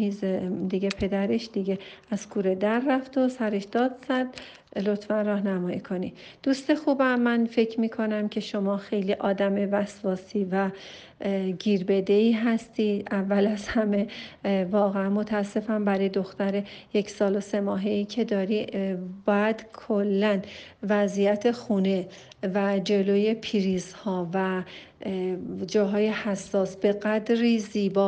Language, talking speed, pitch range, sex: Persian, 125 wpm, 195-220 Hz, female